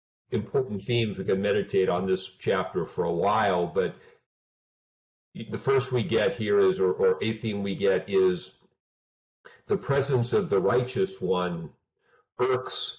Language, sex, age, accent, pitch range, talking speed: English, male, 50-69, American, 95-130 Hz, 150 wpm